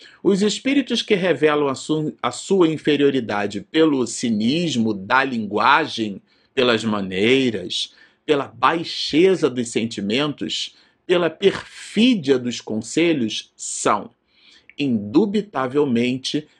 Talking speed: 85 wpm